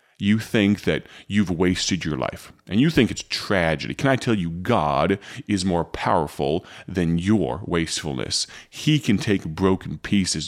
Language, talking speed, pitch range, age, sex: English, 160 wpm, 85-105 Hz, 30-49, male